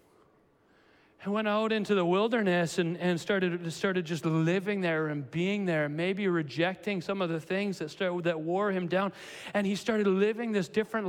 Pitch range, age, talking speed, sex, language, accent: 215-340 Hz, 40-59, 185 wpm, male, Russian, American